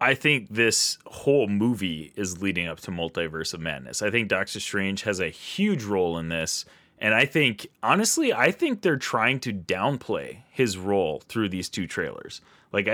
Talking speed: 180 wpm